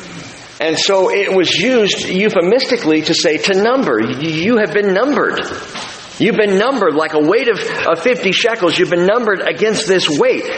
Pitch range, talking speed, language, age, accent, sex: 135-220 Hz, 165 wpm, English, 50-69, American, male